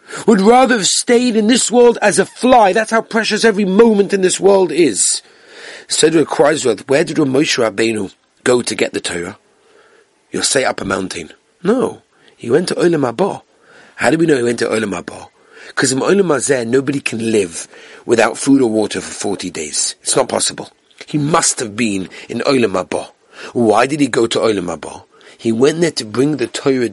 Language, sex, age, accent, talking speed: English, male, 40-59, British, 185 wpm